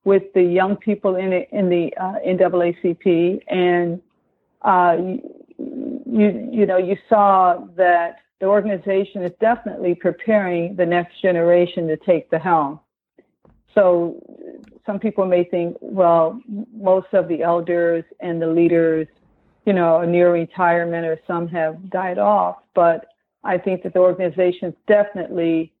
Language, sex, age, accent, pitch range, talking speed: English, female, 50-69, American, 170-205 Hz, 135 wpm